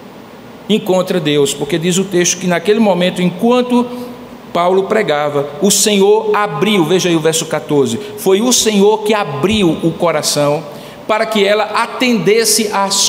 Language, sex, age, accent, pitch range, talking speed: Portuguese, male, 50-69, Brazilian, 170-215 Hz, 145 wpm